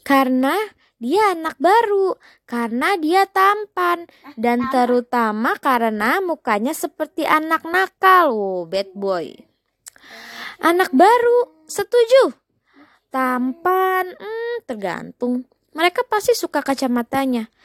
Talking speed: 90 wpm